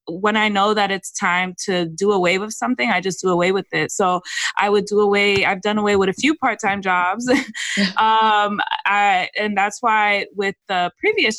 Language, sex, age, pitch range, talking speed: English, female, 20-39, 180-220 Hz, 195 wpm